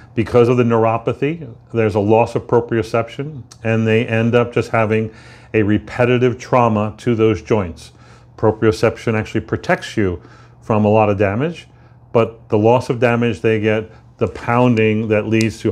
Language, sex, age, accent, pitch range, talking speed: English, male, 40-59, American, 110-120 Hz, 160 wpm